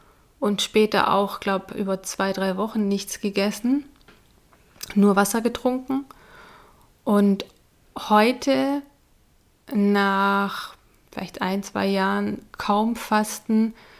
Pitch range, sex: 190-220 Hz, female